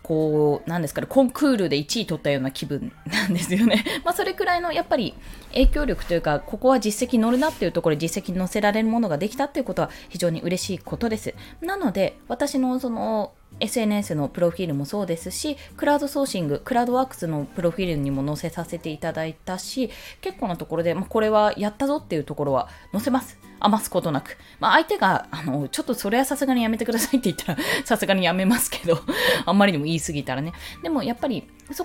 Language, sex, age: Japanese, female, 20-39